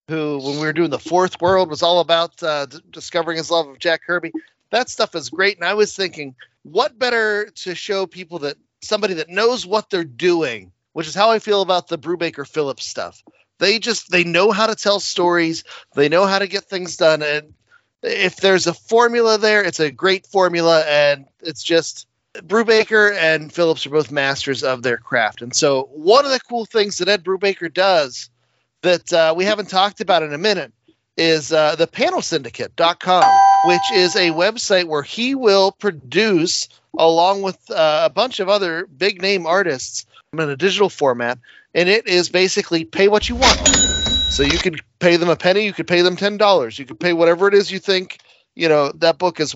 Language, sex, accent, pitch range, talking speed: English, male, American, 160-200 Hz, 200 wpm